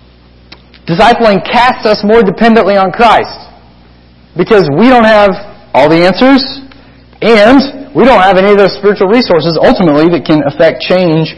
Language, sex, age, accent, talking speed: English, male, 30-49, American, 150 wpm